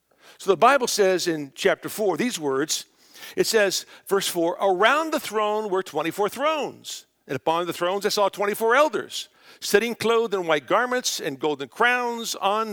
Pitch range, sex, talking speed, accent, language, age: 140-215 Hz, male, 170 wpm, American, English, 50-69